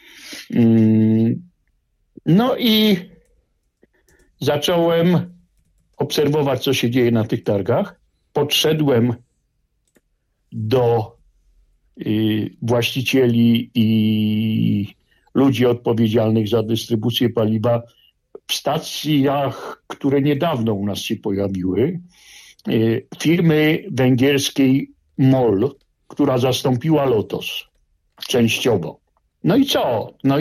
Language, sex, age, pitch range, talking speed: Polish, male, 60-79, 110-145 Hz, 75 wpm